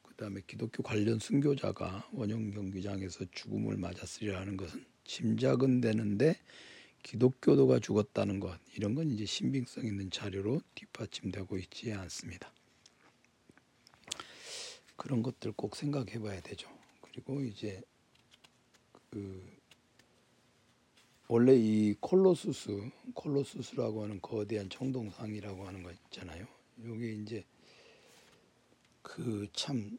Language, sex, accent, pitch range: Korean, male, native, 100-130 Hz